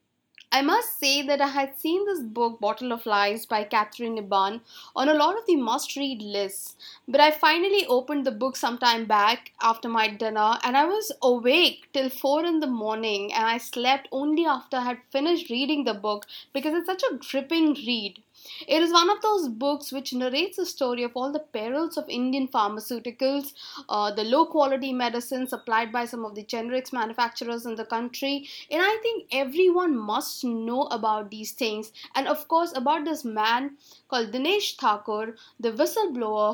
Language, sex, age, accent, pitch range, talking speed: English, female, 20-39, Indian, 225-290 Hz, 180 wpm